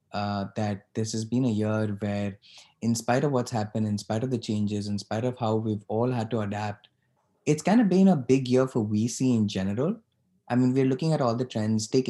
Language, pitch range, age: English, 105-125 Hz, 20-39